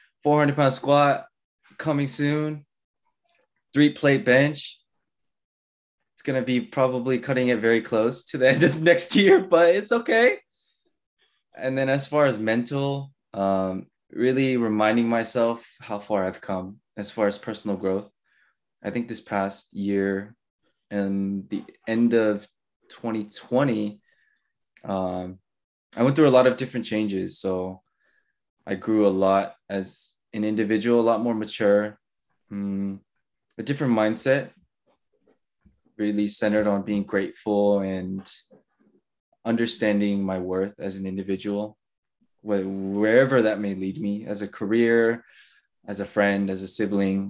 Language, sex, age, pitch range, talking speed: English, male, 20-39, 100-135 Hz, 135 wpm